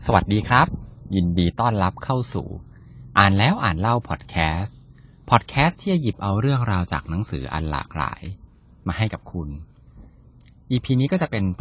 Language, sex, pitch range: Thai, male, 80-115 Hz